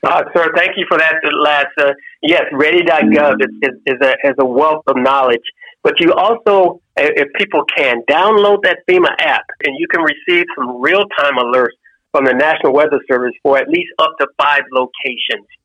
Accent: American